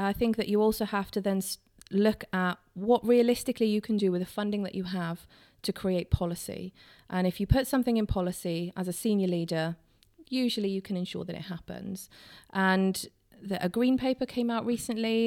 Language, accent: English, British